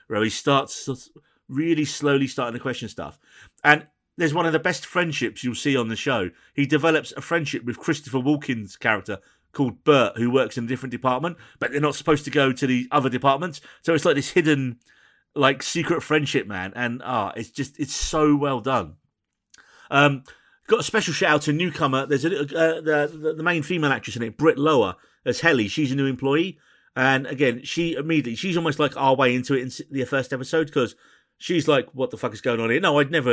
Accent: British